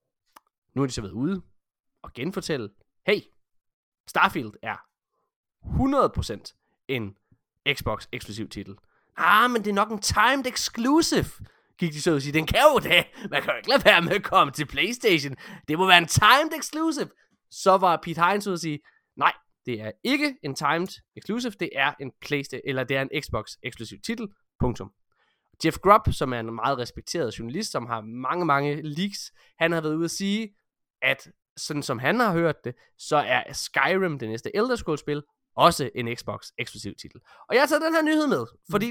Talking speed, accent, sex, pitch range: 185 wpm, native, male, 140-225 Hz